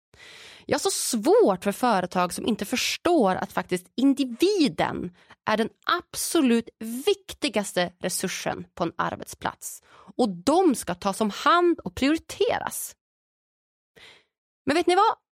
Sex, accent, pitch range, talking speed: female, Swedish, 185-290 Hz, 120 wpm